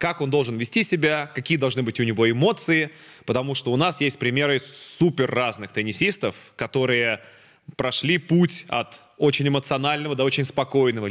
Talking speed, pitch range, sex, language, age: 155 wpm, 115-145 Hz, male, Russian, 20-39